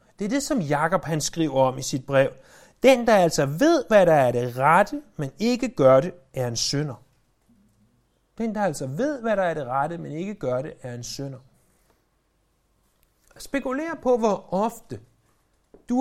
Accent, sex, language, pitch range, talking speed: native, male, Danish, 135-205 Hz, 180 wpm